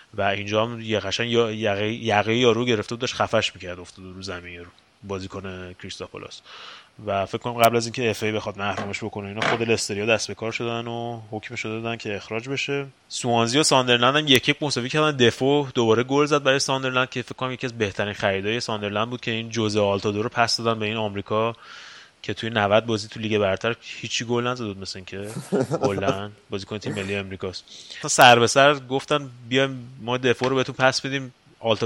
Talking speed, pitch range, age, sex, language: 195 wpm, 105-125 Hz, 20-39, male, Persian